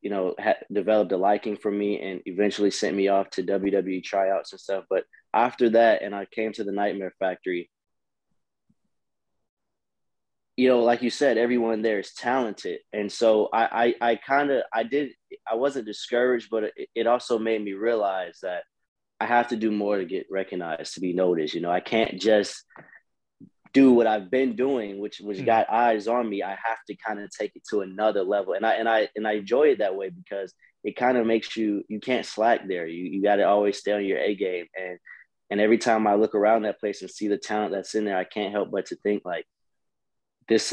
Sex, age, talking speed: male, 20-39, 220 wpm